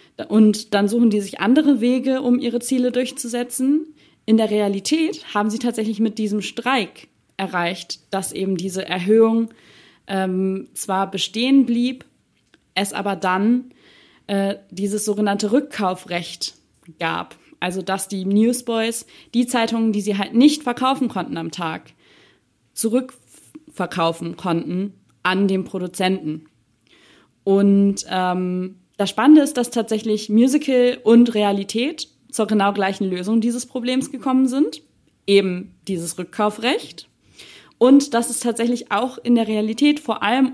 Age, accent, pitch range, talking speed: 20-39, German, 190-245 Hz, 130 wpm